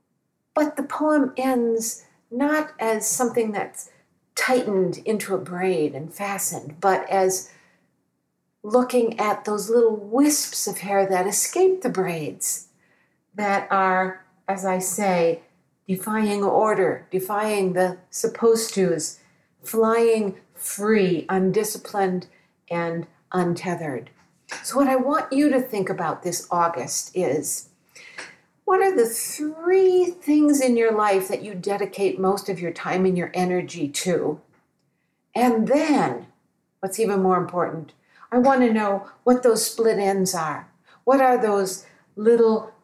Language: English